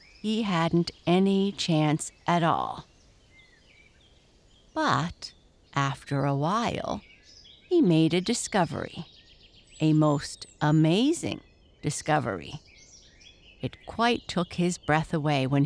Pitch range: 145-210 Hz